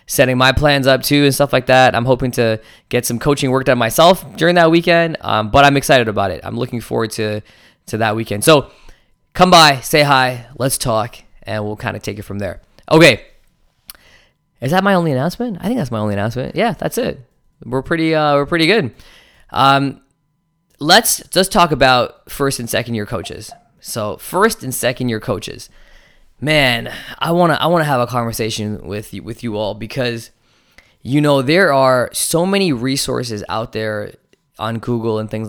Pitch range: 110-145 Hz